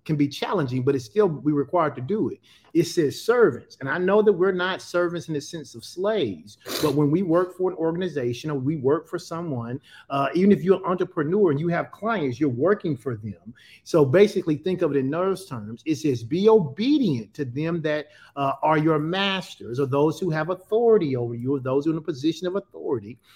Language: English